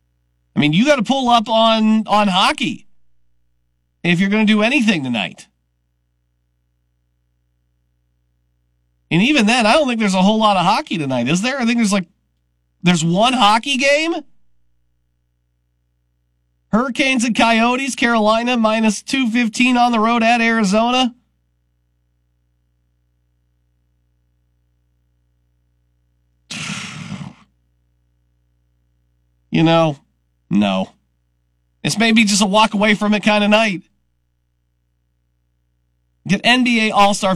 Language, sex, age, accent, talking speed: English, male, 40-59, American, 110 wpm